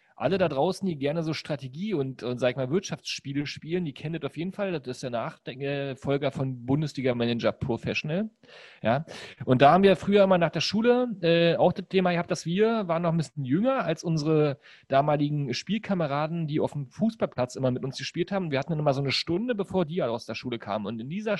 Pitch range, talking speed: 135-180 Hz, 220 wpm